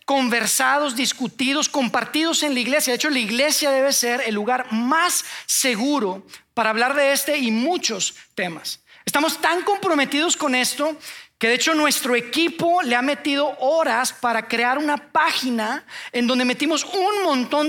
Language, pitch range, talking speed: Spanish, 245-305 Hz, 155 wpm